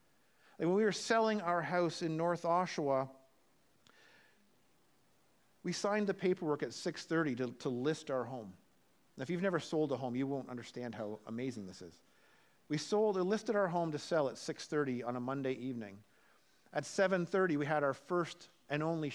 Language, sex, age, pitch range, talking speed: English, male, 50-69, 145-190 Hz, 180 wpm